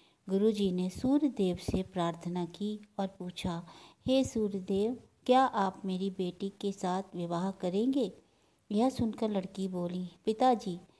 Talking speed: 135 wpm